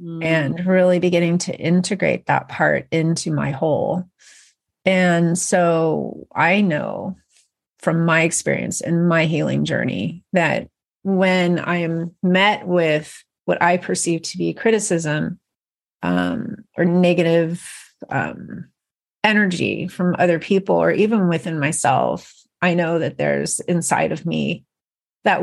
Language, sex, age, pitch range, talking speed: English, female, 30-49, 165-185 Hz, 125 wpm